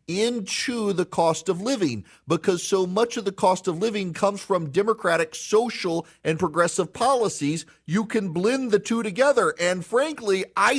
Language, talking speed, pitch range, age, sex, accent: English, 160 wpm, 145-205 Hz, 40-59, male, American